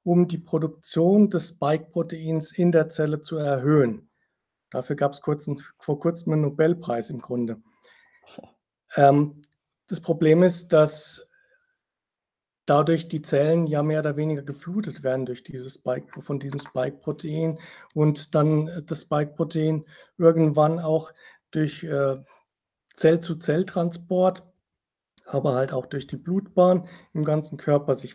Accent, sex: German, male